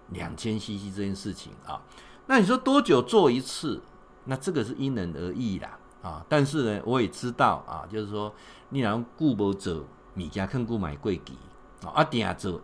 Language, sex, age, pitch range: Chinese, male, 50-69, 95-130 Hz